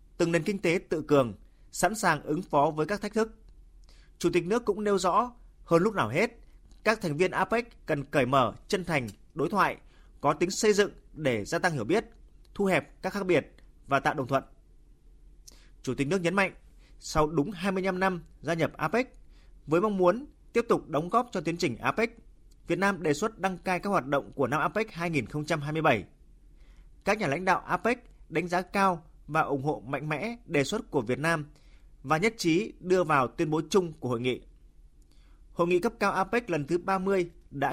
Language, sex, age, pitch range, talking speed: Vietnamese, male, 20-39, 140-190 Hz, 200 wpm